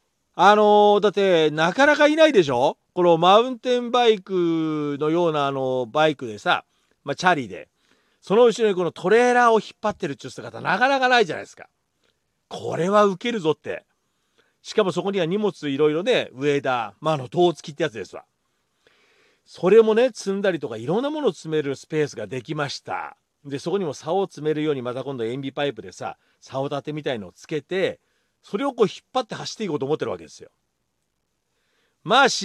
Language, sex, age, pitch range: Japanese, male, 40-59, 155-235 Hz